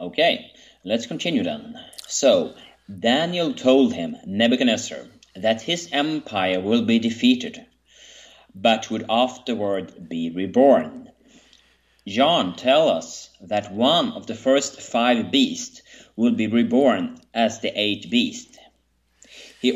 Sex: male